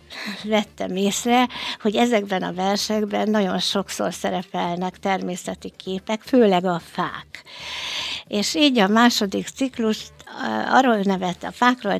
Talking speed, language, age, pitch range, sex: 115 wpm, Hungarian, 60-79, 185-245 Hz, female